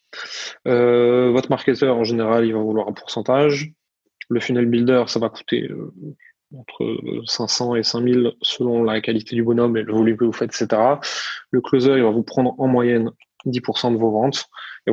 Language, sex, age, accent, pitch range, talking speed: French, male, 20-39, French, 110-130 Hz, 185 wpm